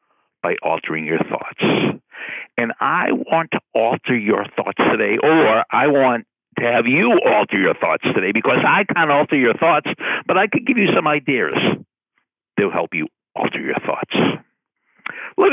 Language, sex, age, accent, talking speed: English, male, 60-79, American, 160 wpm